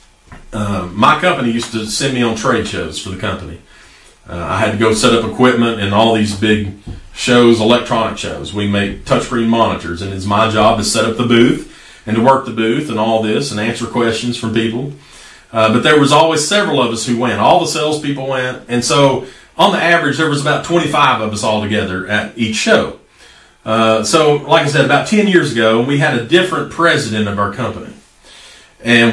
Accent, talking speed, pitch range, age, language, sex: American, 210 wpm, 110-135 Hz, 40-59, English, male